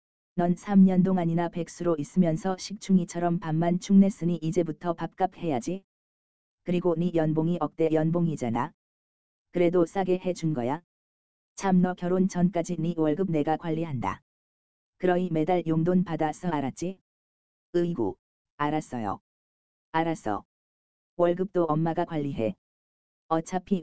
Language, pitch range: Korean, 125-180 Hz